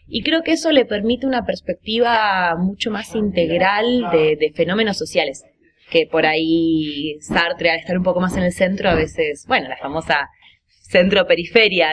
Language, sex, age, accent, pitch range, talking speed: Spanish, female, 20-39, Argentinian, 160-230 Hz, 165 wpm